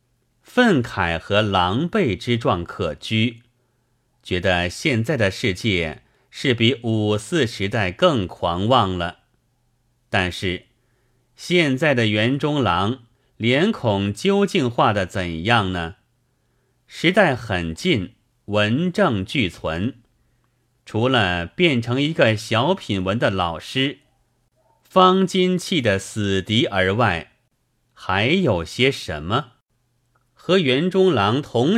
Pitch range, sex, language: 100-130 Hz, male, Chinese